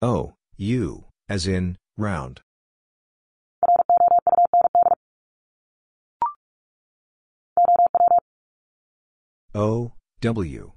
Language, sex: English, male